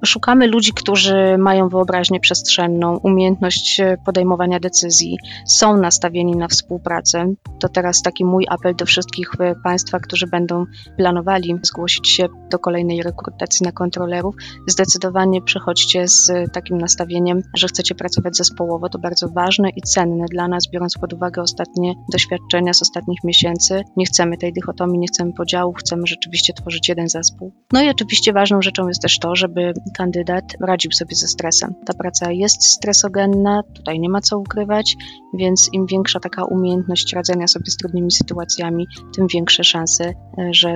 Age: 20-39